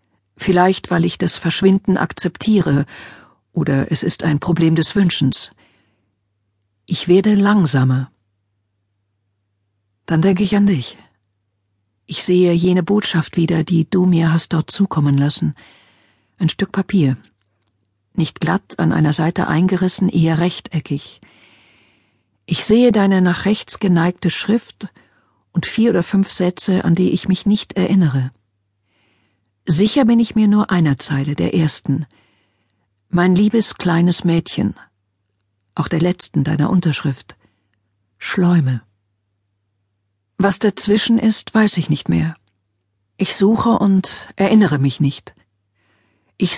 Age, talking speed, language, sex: 50-69, 120 wpm, German, female